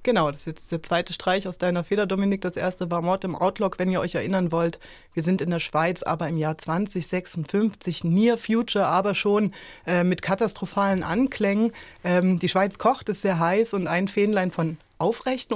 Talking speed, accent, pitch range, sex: 195 wpm, German, 160-195 Hz, female